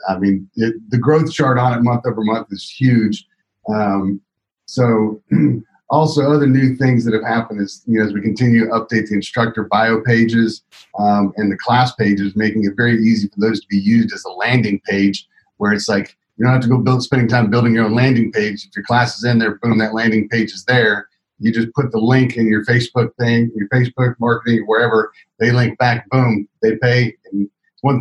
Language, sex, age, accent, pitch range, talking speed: English, male, 40-59, American, 110-130 Hz, 215 wpm